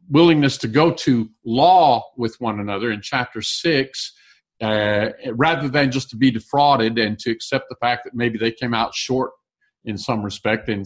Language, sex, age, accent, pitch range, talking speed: English, male, 50-69, American, 115-160 Hz, 180 wpm